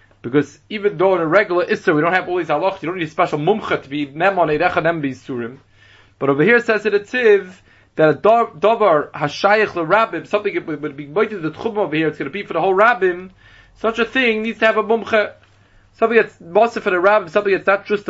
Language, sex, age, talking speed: English, male, 30-49, 235 wpm